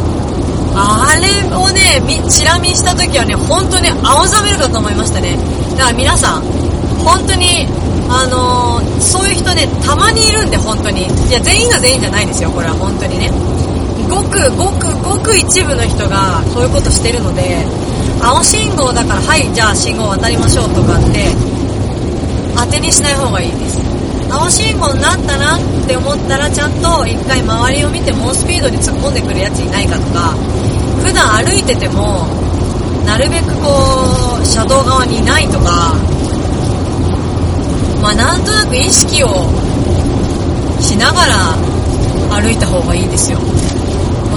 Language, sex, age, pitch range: Japanese, female, 30-49, 90-105 Hz